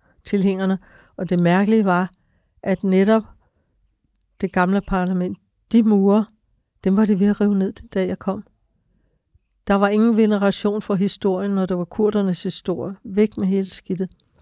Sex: female